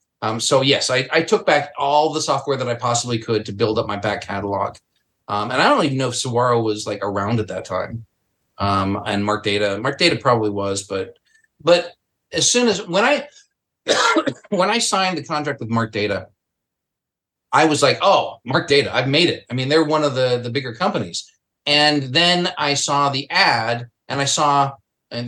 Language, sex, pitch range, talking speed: English, male, 120-165 Hz, 200 wpm